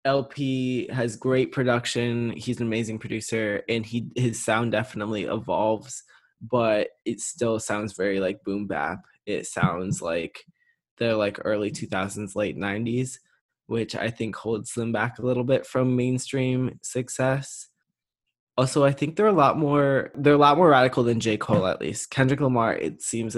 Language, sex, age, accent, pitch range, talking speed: English, male, 20-39, American, 110-125 Hz, 165 wpm